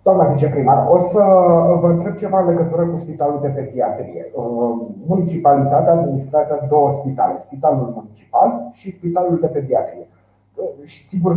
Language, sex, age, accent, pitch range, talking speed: Romanian, male, 30-49, native, 130-165 Hz, 130 wpm